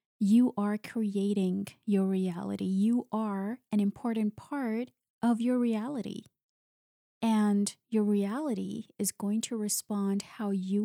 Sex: female